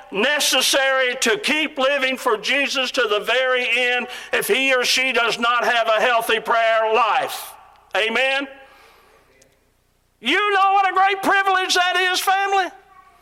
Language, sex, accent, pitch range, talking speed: English, male, American, 240-375 Hz, 140 wpm